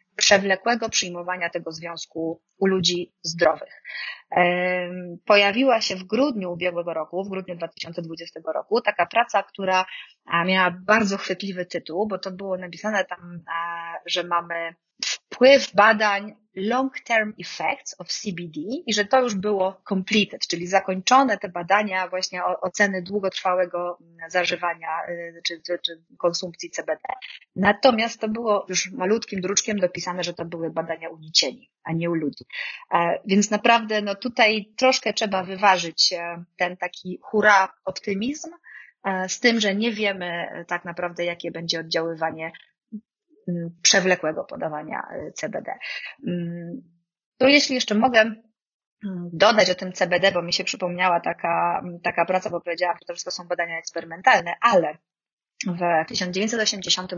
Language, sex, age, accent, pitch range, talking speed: Polish, female, 30-49, native, 170-210 Hz, 130 wpm